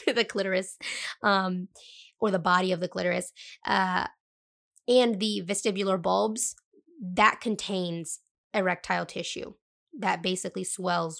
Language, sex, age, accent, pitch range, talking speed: English, female, 20-39, American, 190-225 Hz, 115 wpm